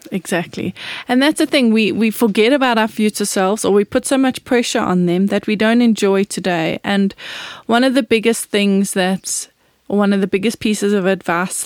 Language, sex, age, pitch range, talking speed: English, female, 20-39, 190-230 Hz, 200 wpm